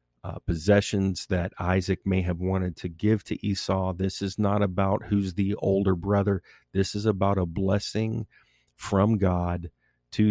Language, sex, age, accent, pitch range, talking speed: English, male, 40-59, American, 90-105 Hz, 155 wpm